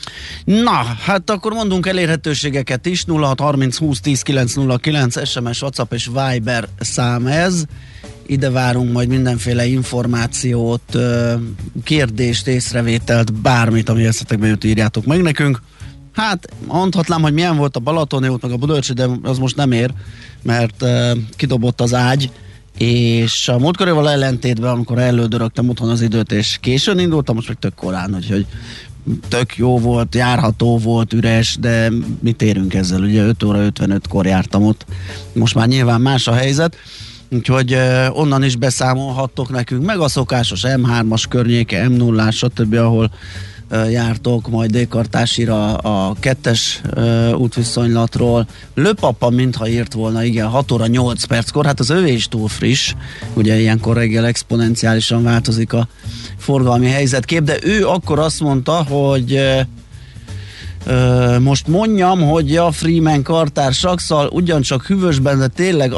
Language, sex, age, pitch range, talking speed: Hungarian, male, 30-49, 115-135 Hz, 140 wpm